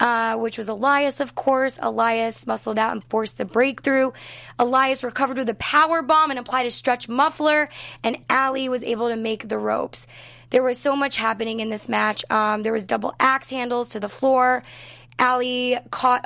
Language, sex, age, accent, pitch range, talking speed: English, female, 20-39, American, 220-260 Hz, 190 wpm